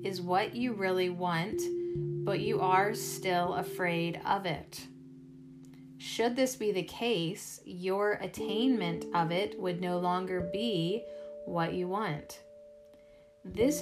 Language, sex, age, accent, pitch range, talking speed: English, female, 30-49, American, 145-205 Hz, 125 wpm